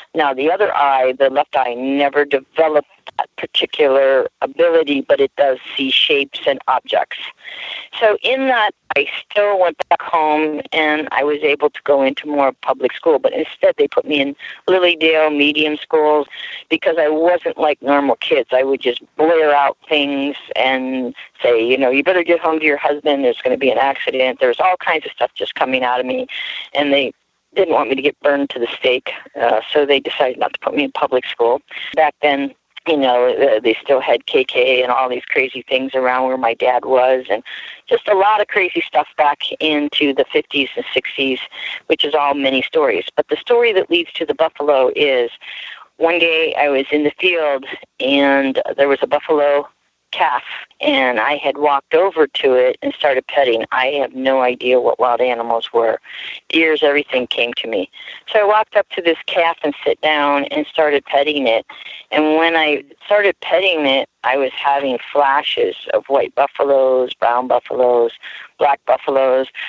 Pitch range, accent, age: 135-185 Hz, American, 50-69